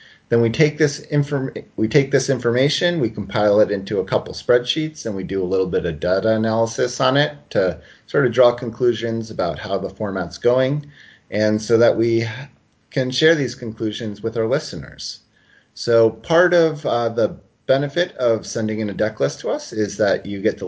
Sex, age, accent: male, 30-49, American